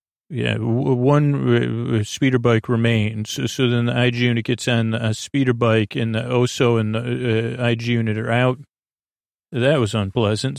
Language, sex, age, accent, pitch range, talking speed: English, male, 40-59, American, 110-125 Hz, 170 wpm